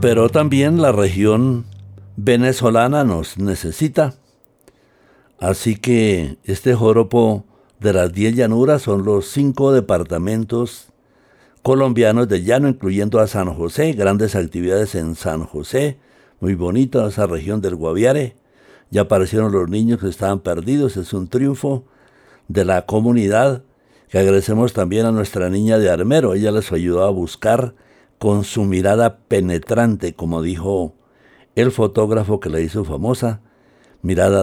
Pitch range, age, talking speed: 95-120 Hz, 60-79, 130 wpm